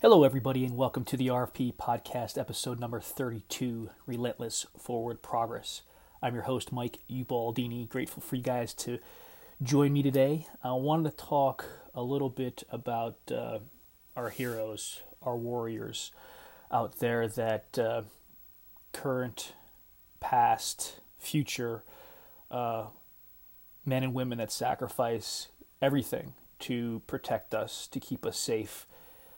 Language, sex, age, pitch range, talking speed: English, male, 30-49, 115-130 Hz, 125 wpm